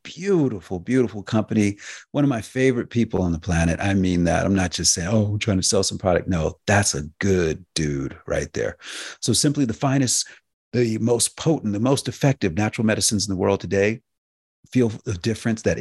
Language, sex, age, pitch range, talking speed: English, male, 40-59, 90-110 Hz, 195 wpm